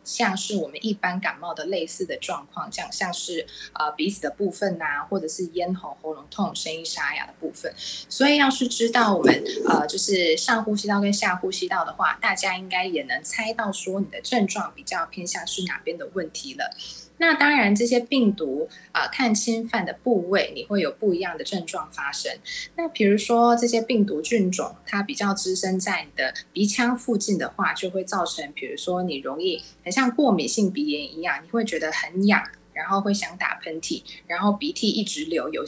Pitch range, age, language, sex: 180-235 Hz, 20-39, Chinese, female